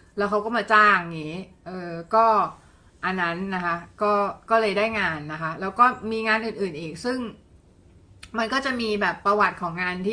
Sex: female